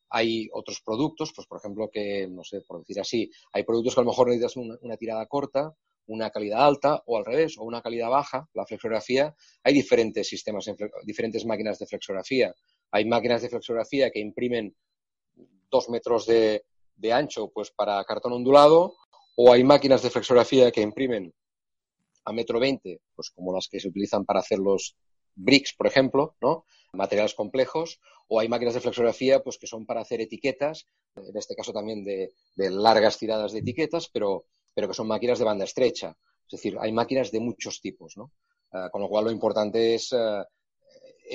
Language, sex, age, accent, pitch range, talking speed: Spanish, male, 30-49, Spanish, 110-140 Hz, 185 wpm